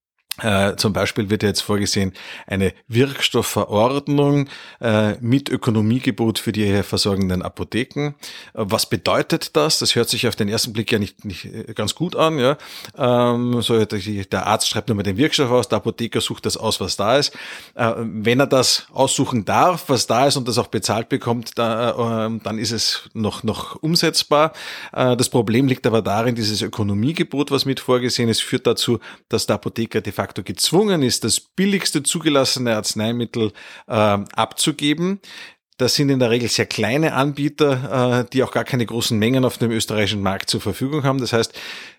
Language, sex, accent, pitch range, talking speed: German, male, Austrian, 110-135 Hz, 165 wpm